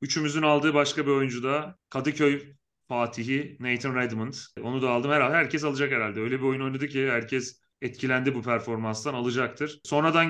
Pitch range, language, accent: 120-145 Hz, Turkish, native